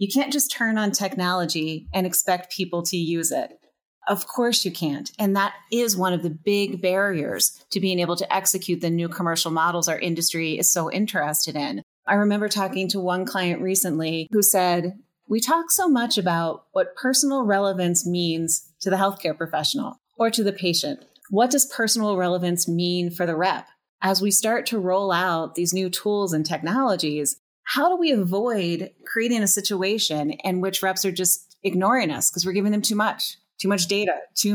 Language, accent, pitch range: English, American, 175-210 Hz